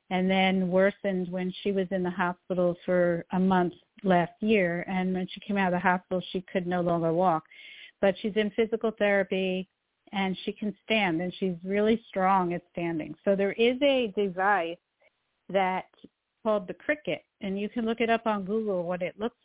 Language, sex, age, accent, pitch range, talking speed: English, female, 50-69, American, 185-215 Hz, 190 wpm